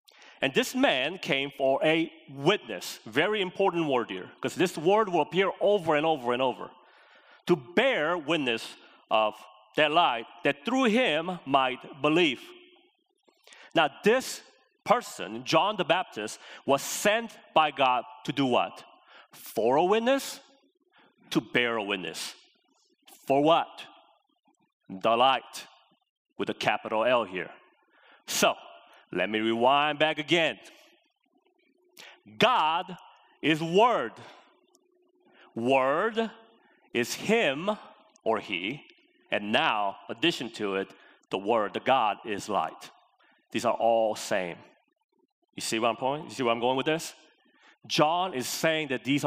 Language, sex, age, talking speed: English, male, 30-49, 130 wpm